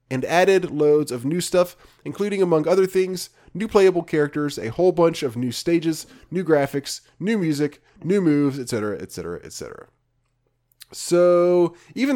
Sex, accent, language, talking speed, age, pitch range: male, American, English, 150 wpm, 20-39, 125-175 Hz